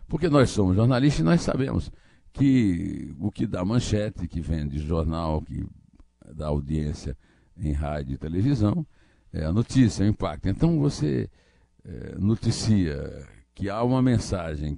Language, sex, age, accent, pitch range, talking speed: Portuguese, male, 60-79, Brazilian, 85-130 Hz, 140 wpm